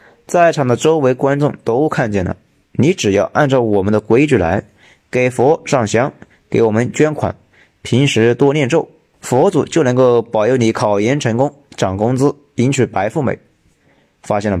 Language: Chinese